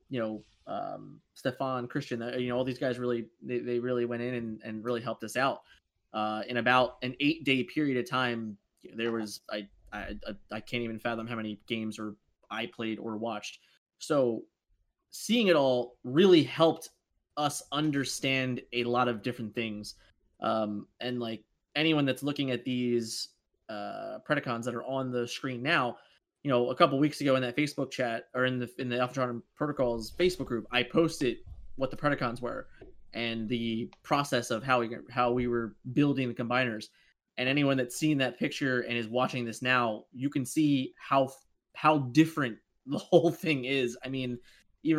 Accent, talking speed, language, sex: American, 185 wpm, English, male